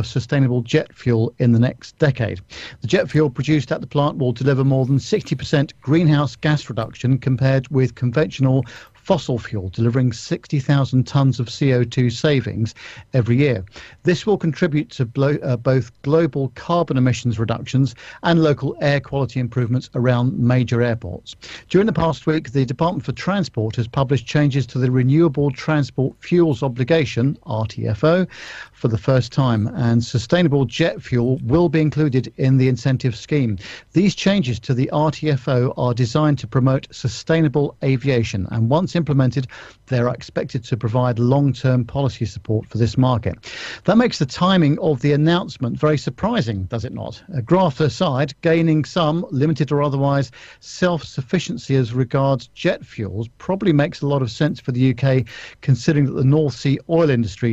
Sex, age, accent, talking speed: male, 50-69, British, 160 wpm